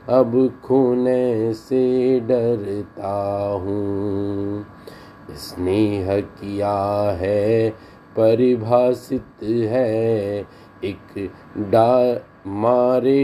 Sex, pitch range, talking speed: male, 105-125 Hz, 55 wpm